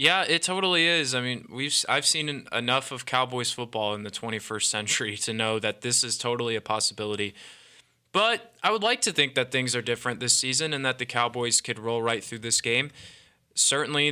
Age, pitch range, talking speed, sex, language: 20-39, 120-145 Hz, 200 wpm, male, English